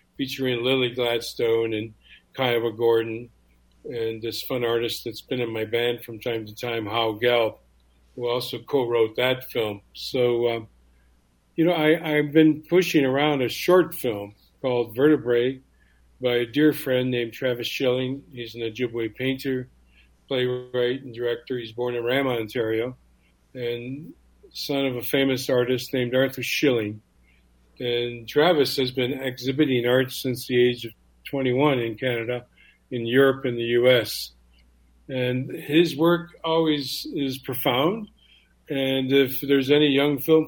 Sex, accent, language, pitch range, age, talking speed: male, American, English, 115-140 Hz, 50-69, 145 wpm